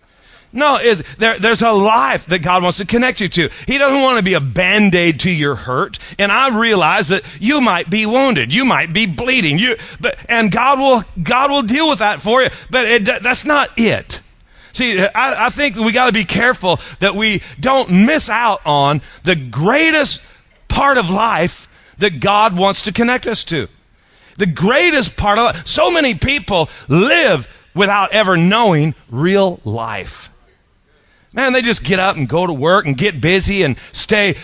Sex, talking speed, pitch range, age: male, 185 wpm, 150-230 Hz, 40-59